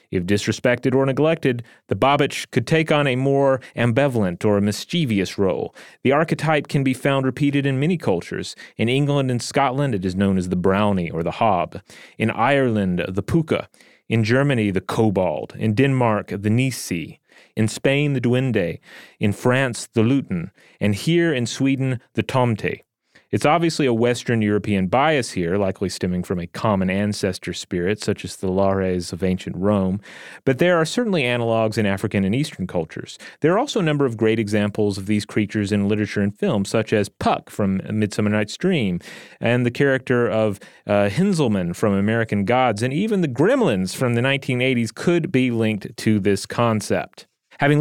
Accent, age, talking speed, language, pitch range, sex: American, 30-49, 175 wpm, English, 100-140 Hz, male